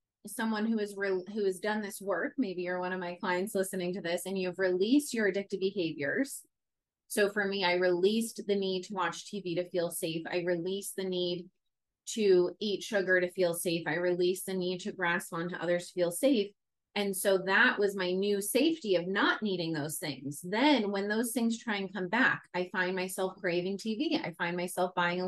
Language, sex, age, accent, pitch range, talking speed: English, female, 30-49, American, 185-265 Hz, 210 wpm